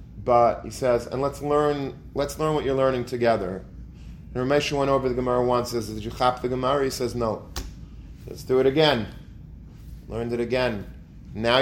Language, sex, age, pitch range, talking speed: English, male, 30-49, 110-135 Hz, 190 wpm